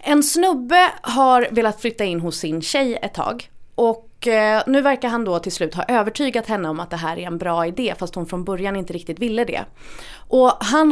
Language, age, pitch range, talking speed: Swedish, 30-49, 175-245 Hz, 215 wpm